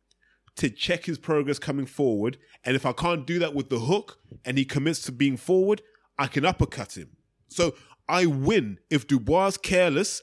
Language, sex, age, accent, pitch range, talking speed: English, male, 20-39, British, 115-170 Hz, 180 wpm